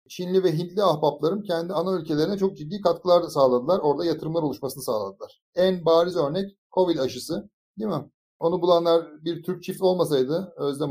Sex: male